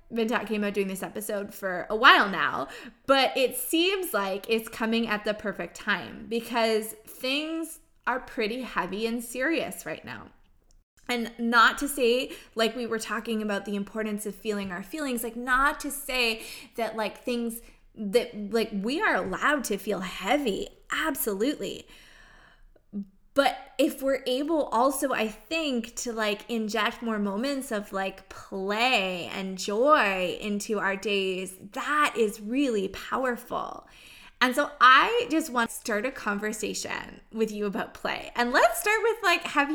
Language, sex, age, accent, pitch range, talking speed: English, female, 20-39, American, 210-280 Hz, 155 wpm